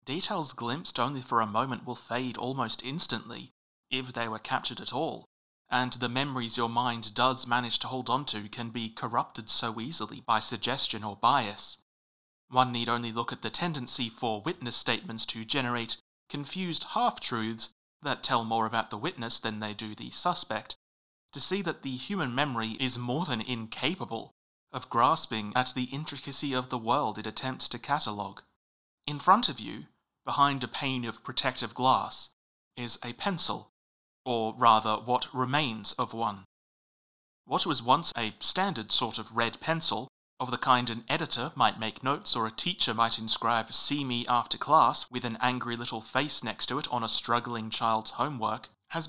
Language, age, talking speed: English, 30-49, 170 wpm